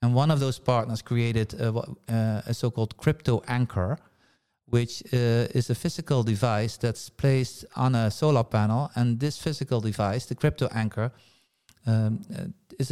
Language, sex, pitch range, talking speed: English, male, 115-135 Hz, 150 wpm